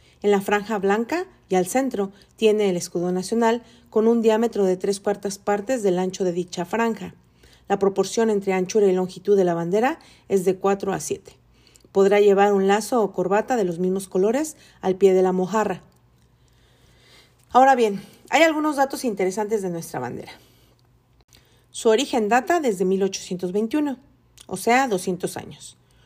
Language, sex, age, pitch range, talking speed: Spanish, female, 40-59, 185-215 Hz, 160 wpm